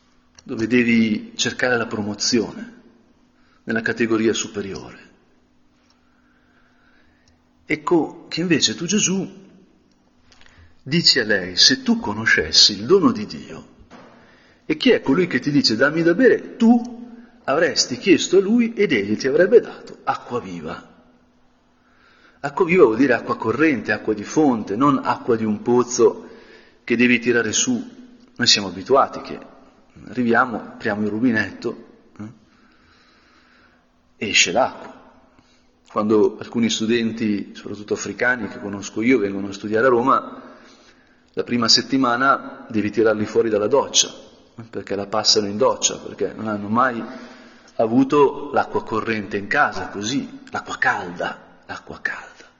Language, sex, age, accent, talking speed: Italian, male, 50-69, native, 130 wpm